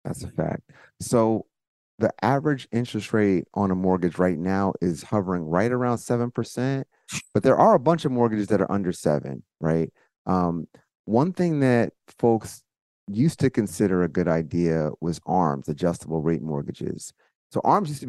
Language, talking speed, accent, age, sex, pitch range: English, 165 wpm, American, 30-49, male, 85-105 Hz